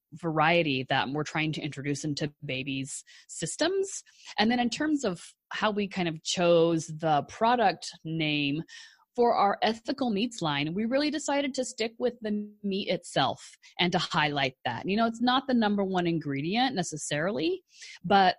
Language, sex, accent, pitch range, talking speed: English, female, American, 150-195 Hz, 165 wpm